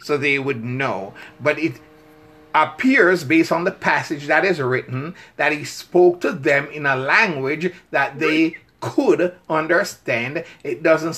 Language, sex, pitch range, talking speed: English, male, 150-180 Hz, 150 wpm